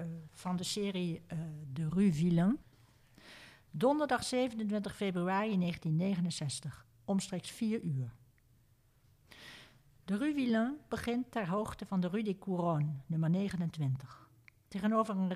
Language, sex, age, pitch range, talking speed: Dutch, female, 60-79, 150-215 Hz, 115 wpm